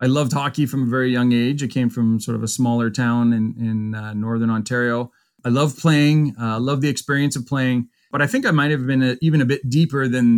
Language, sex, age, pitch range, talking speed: English, male, 30-49, 120-150 Hz, 255 wpm